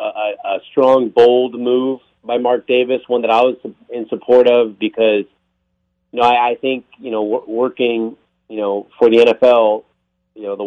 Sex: male